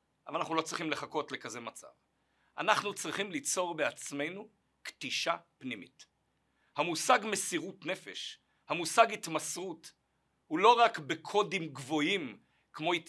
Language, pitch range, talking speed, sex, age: Hebrew, 155-210 Hz, 110 wpm, male, 50-69